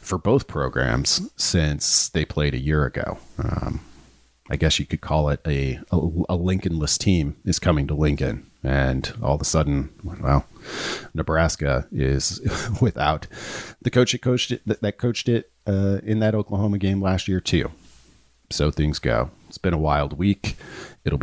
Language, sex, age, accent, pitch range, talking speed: English, male, 40-59, American, 70-95 Hz, 170 wpm